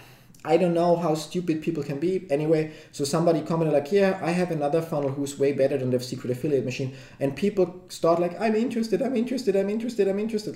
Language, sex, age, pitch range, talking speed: English, male, 30-49, 140-165 Hz, 215 wpm